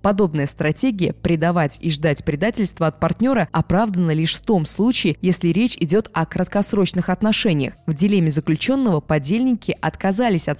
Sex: female